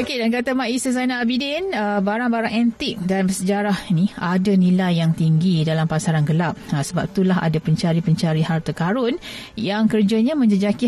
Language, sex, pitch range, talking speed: Malay, female, 165-215 Hz, 160 wpm